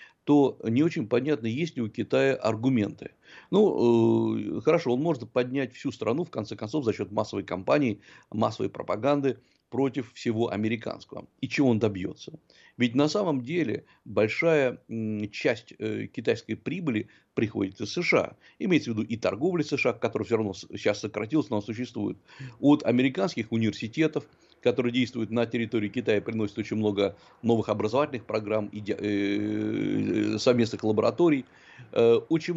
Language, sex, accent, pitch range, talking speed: Russian, male, native, 110-145 Hz, 165 wpm